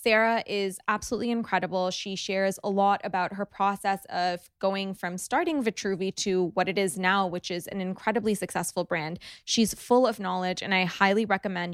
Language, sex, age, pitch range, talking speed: English, female, 20-39, 180-210 Hz, 180 wpm